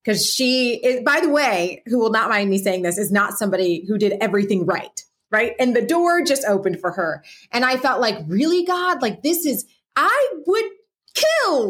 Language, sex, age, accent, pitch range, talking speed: English, female, 30-49, American, 180-255 Hz, 205 wpm